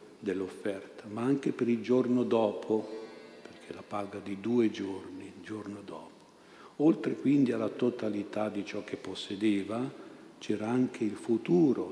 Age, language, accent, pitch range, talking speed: 50-69, Italian, native, 100-115 Hz, 140 wpm